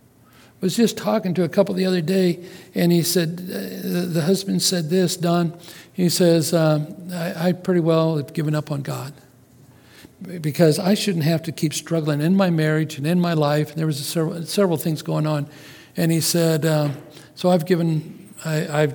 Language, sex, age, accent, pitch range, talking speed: English, male, 60-79, American, 145-175 Hz, 180 wpm